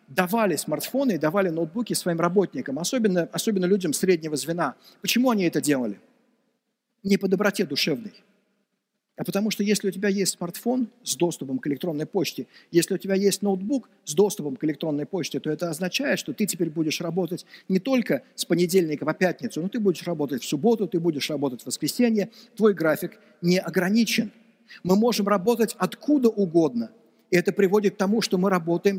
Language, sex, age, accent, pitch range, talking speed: Russian, male, 50-69, native, 175-215 Hz, 175 wpm